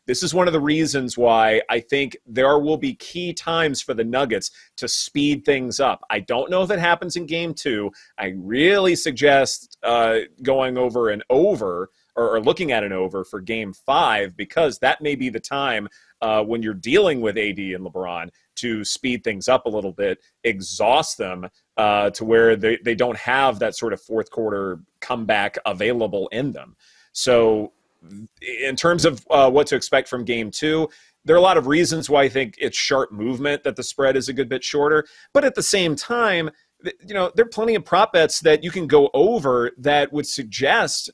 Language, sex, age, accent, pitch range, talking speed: English, male, 30-49, American, 115-155 Hz, 200 wpm